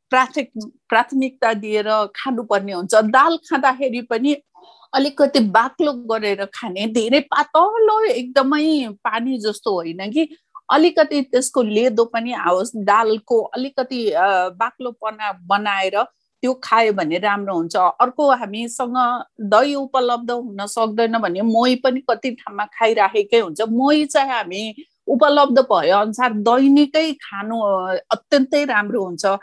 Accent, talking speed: Indian, 95 wpm